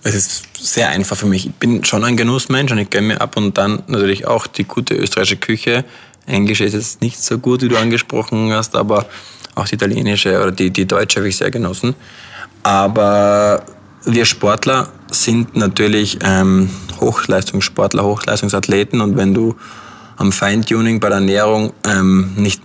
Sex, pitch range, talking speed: male, 100-110 Hz, 170 wpm